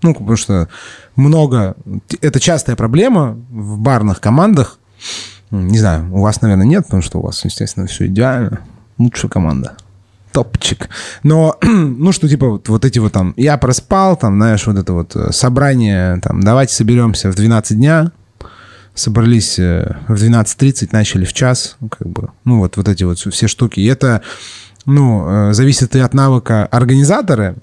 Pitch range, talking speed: 100-125 Hz, 160 wpm